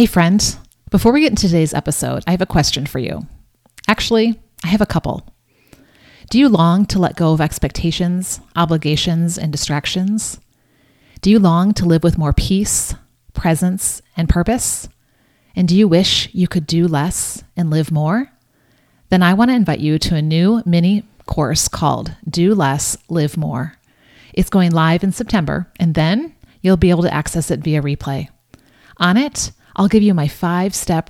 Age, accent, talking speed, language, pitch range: 30-49, American, 175 wpm, English, 155-195 Hz